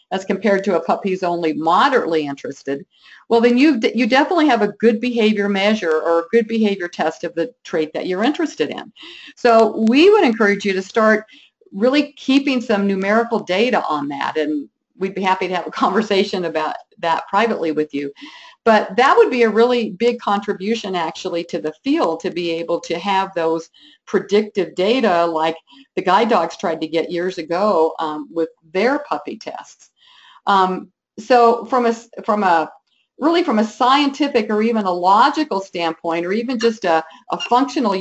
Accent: American